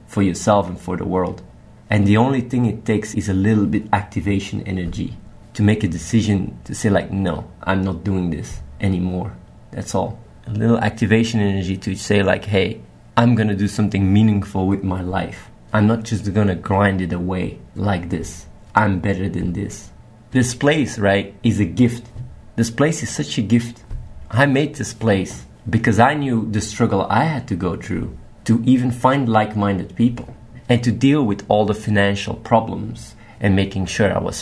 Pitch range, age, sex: 100-120 Hz, 20-39, male